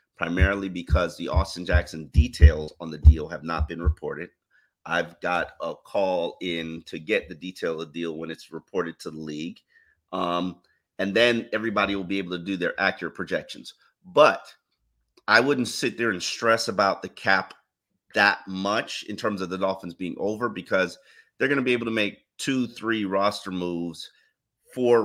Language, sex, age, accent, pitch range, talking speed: English, male, 30-49, American, 85-105 Hz, 180 wpm